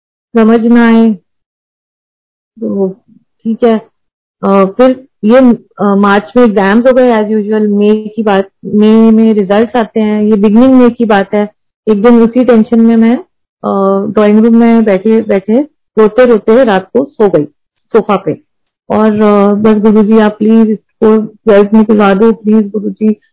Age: 30-49